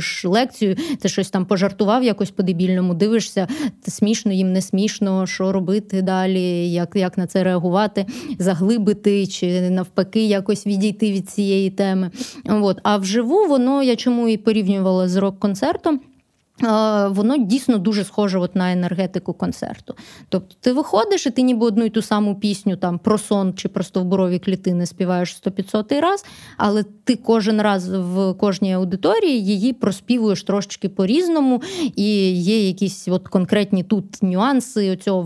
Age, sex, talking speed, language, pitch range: 20-39, female, 145 wpm, Ukrainian, 185-235 Hz